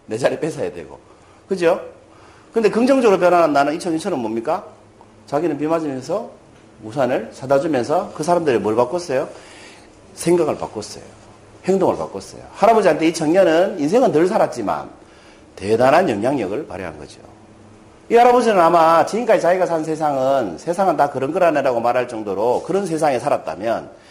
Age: 40-59